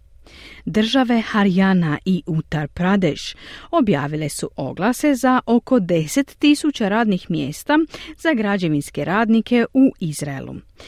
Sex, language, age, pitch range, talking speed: female, Croatian, 40-59, 165-250 Hz, 100 wpm